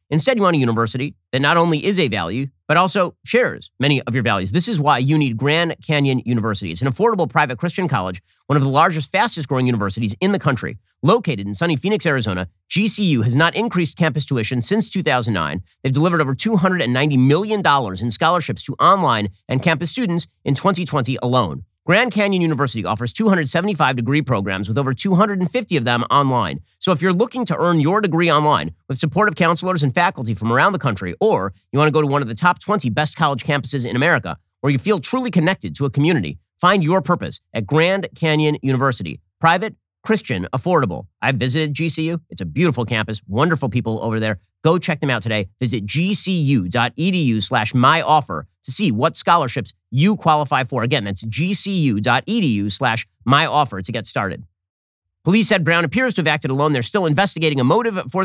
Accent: American